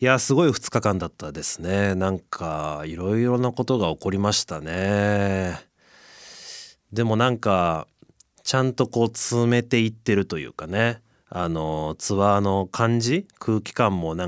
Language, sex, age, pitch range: Japanese, male, 30-49, 85-125 Hz